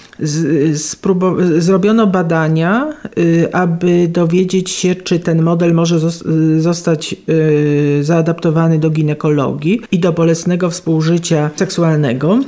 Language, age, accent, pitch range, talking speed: Polish, 40-59, native, 165-185 Hz, 120 wpm